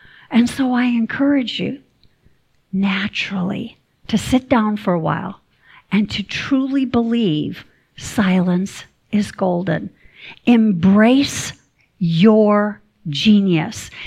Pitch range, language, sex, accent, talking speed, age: 190-255 Hz, English, female, American, 95 wpm, 50-69